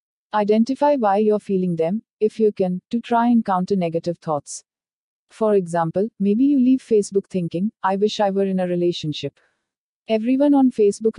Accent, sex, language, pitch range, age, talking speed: native, female, Hindi, 180-225 Hz, 50-69, 165 wpm